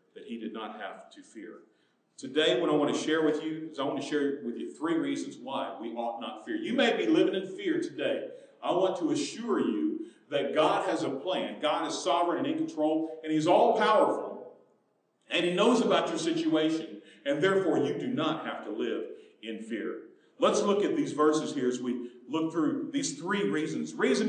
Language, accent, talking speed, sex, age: English, American, 210 wpm, male, 50-69